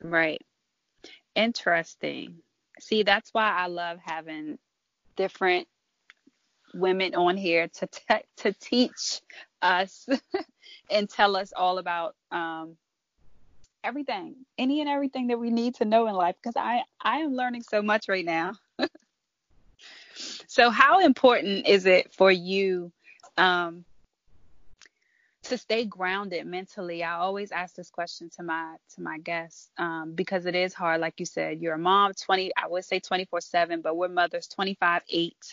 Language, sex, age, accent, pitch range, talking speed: English, female, 20-39, American, 175-235 Hz, 145 wpm